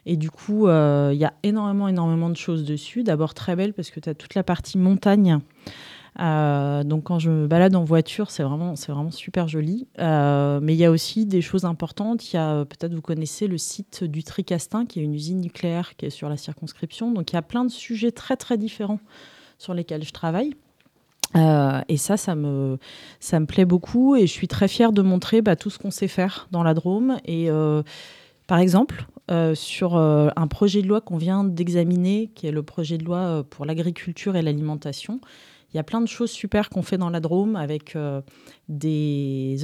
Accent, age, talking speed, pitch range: French, 30-49, 220 wpm, 155-200 Hz